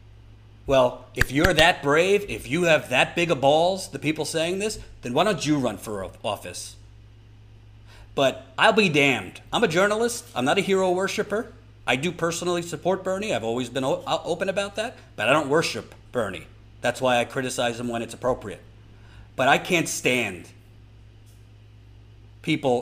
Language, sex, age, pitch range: English, male, 40-59, 105-165 Hz